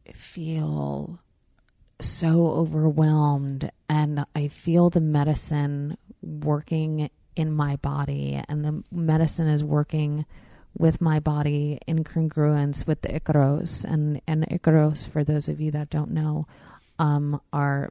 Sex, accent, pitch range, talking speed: female, American, 140-155 Hz, 125 wpm